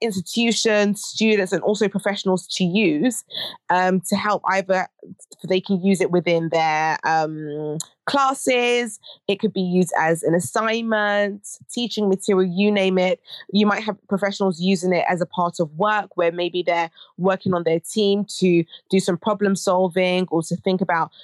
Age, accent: 20-39, British